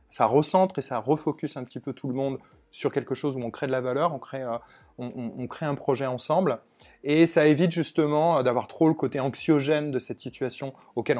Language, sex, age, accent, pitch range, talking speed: French, male, 30-49, French, 120-150 Hz, 235 wpm